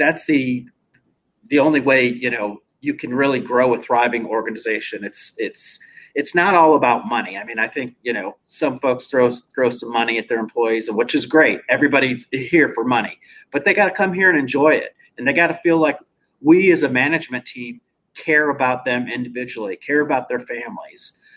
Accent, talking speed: American, 200 wpm